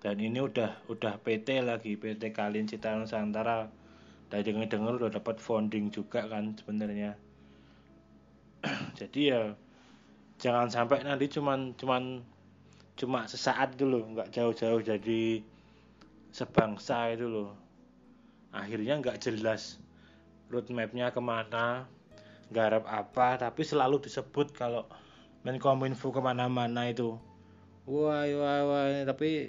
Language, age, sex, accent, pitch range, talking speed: Indonesian, 20-39, male, native, 110-130 Hz, 110 wpm